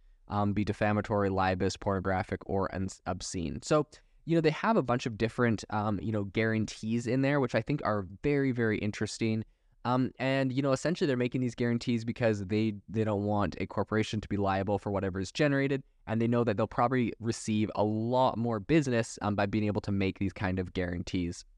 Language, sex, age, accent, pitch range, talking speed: English, male, 20-39, American, 100-115 Hz, 205 wpm